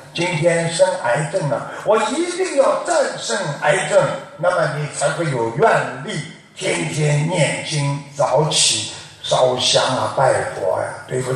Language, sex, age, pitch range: Chinese, male, 60-79, 130-175 Hz